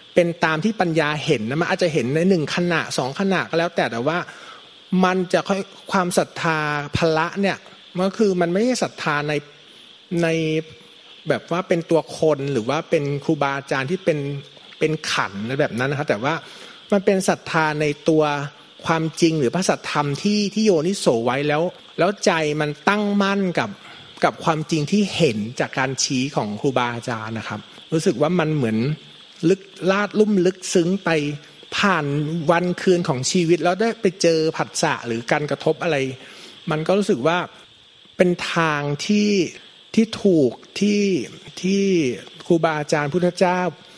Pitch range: 140-180 Hz